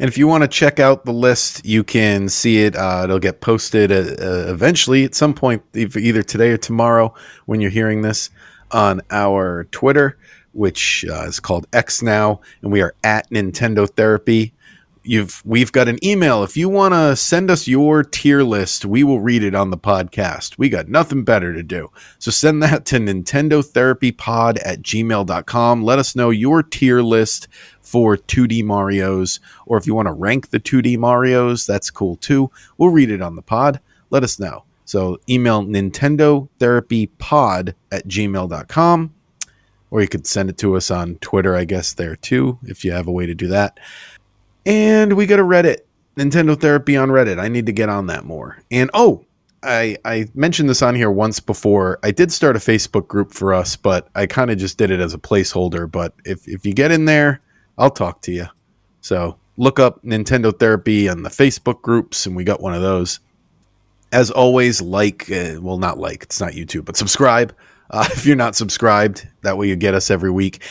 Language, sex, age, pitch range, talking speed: English, male, 30-49, 100-130 Hz, 200 wpm